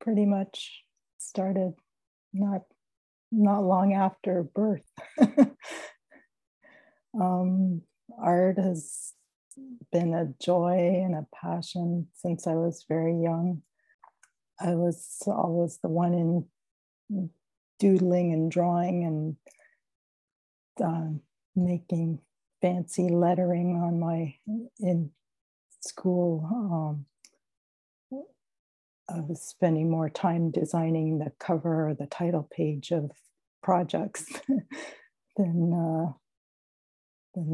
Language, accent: English, American